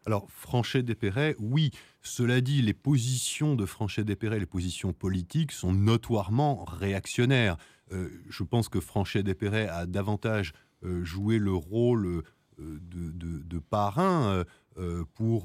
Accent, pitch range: French, 95-120 Hz